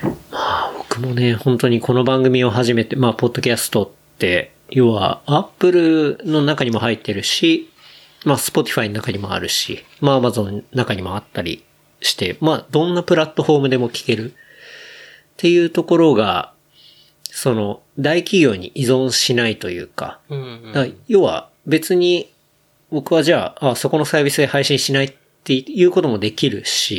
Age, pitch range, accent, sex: 40-59, 115-155 Hz, native, male